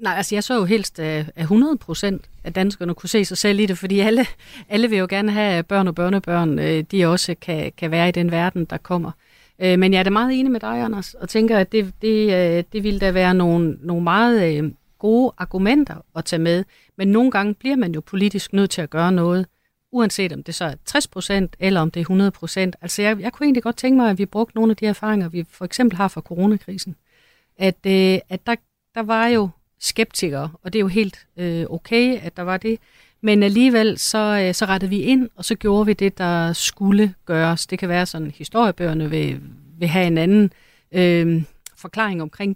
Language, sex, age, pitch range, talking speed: Danish, female, 40-59, 175-220 Hz, 215 wpm